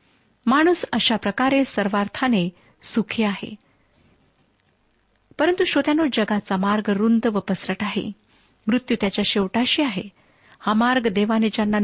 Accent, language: native, Marathi